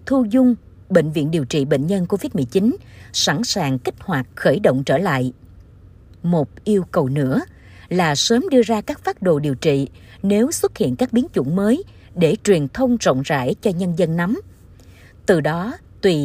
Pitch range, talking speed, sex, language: 140-220 Hz, 180 wpm, female, Vietnamese